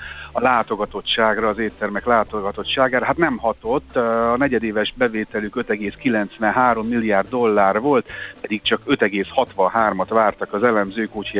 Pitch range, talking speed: 100-120 Hz, 115 wpm